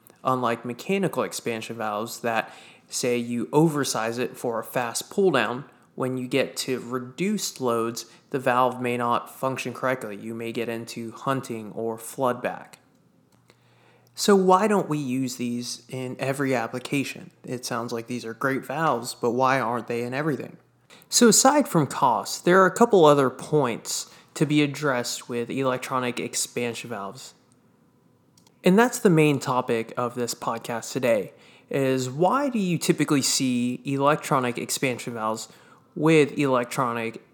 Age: 20-39